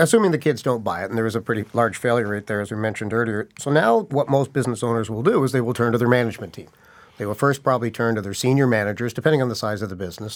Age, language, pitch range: 50-69, English, 105-125 Hz